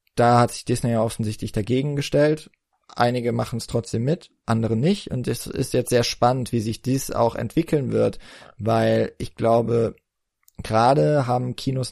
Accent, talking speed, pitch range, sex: German, 165 wpm, 110-125 Hz, male